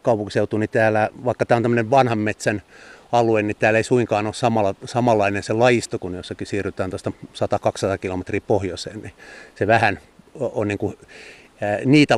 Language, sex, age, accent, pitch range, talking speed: Finnish, male, 30-49, native, 100-115 Hz, 170 wpm